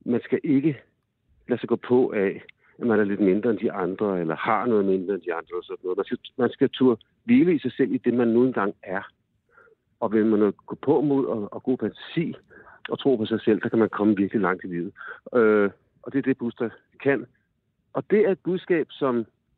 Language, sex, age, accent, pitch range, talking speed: Danish, male, 60-79, native, 105-125 Hz, 245 wpm